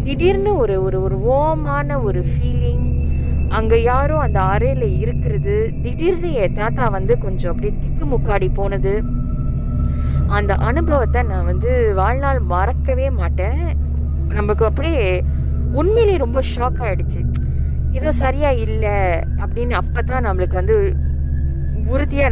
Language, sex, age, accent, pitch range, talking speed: Tamil, female, 20-39, native, 70-75 Hz, 75 wpm